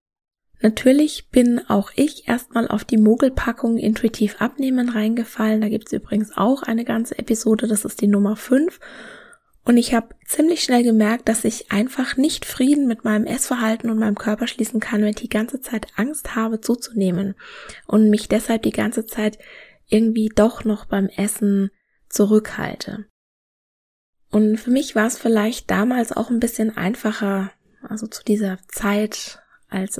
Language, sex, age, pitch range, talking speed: German, female, 20-39, 205-235 Hz, 155 wpm